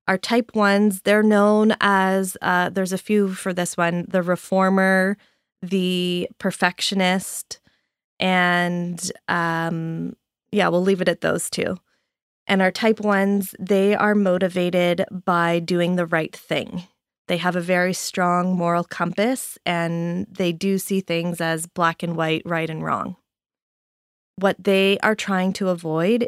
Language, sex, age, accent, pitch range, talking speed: English, female, 20-39, American, 170-195 Hz, 145 wpm